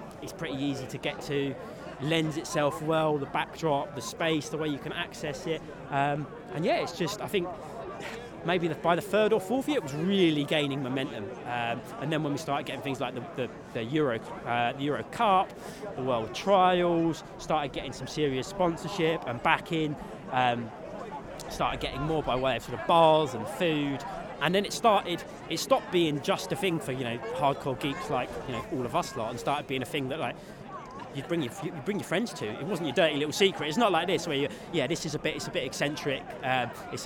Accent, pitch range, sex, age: British, 135-170 Hz, male, 20-39